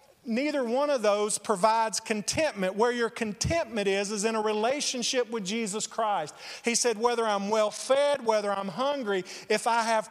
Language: English